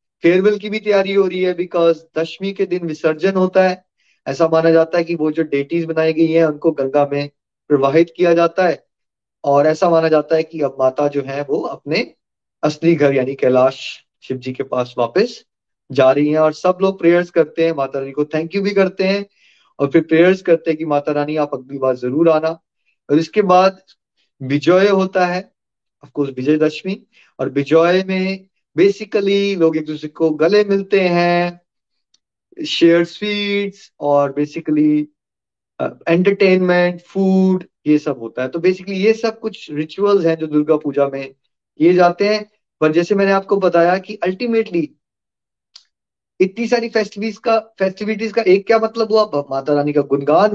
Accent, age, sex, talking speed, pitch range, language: native, 30-49, male, 130 wpm, 155-195 Hz, Hindi